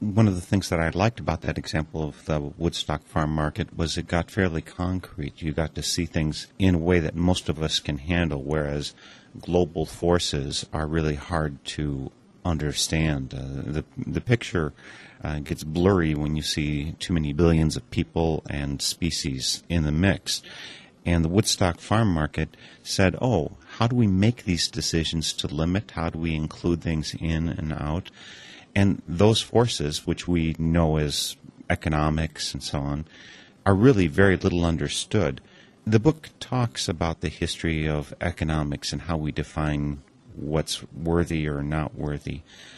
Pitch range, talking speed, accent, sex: 75-90 Hz, 165 wpm, American, male